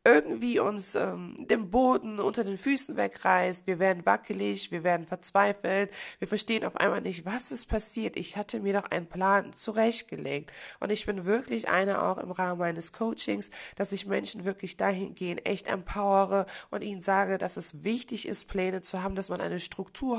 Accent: German